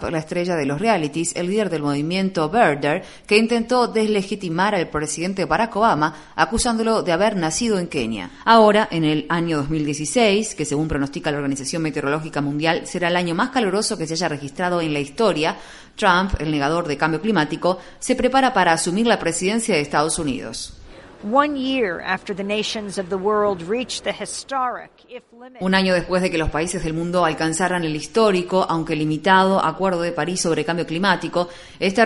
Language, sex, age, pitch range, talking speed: Spanish, female, 30-49, 160-210 Hz, 155 wpm